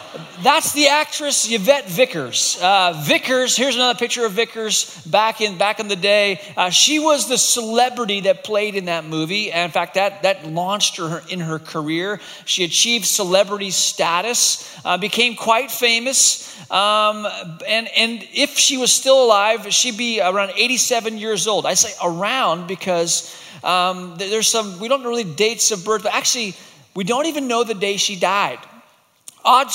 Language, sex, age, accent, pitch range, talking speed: English, male, 30-49, American, 185-235 Hz, 170 wpm